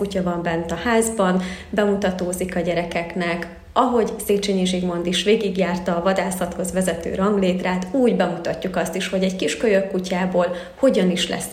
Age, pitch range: 30-49, 180-210 Hz